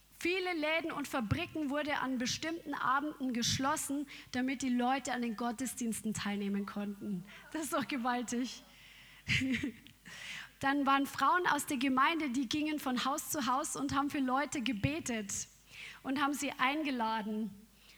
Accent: German